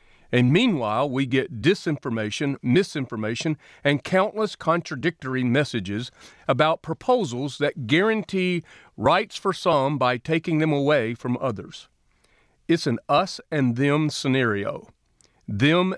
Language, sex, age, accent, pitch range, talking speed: English, male, 40-59, American, 120-160 Hz, 115 wpm